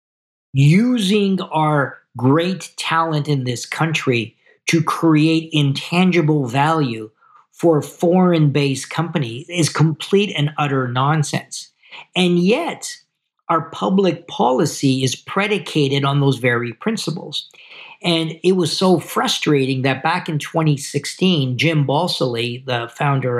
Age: 50-69